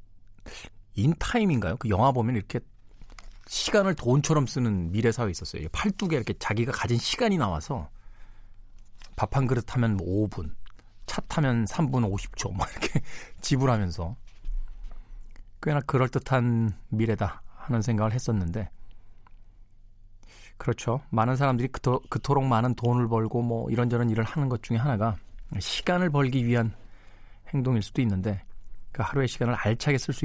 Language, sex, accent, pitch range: Korean, male, native, 100-130 Hz